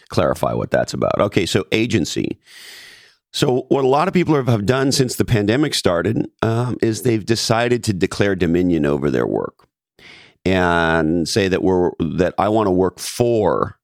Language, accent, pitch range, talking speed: English, American, 85-115 Hz, 170 wpm